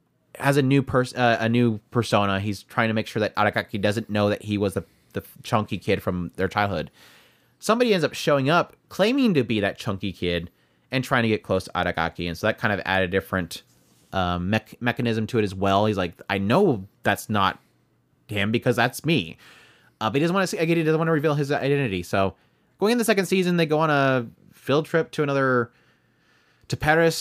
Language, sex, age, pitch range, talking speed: English, male, 30-49, 100-125 Hz, 220 wpm